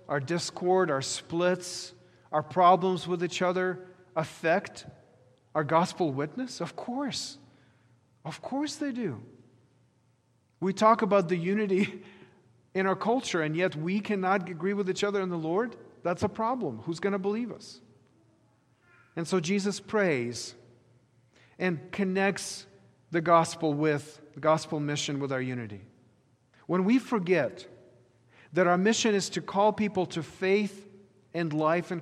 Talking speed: 140 wpm